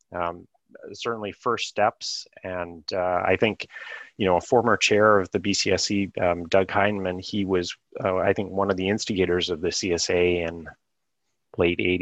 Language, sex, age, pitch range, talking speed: English, male, 30-49, 85-100 Hz, 165 wpm